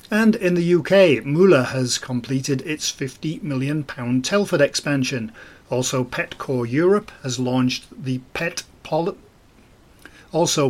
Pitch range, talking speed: 125-170 Hz, 125 wpm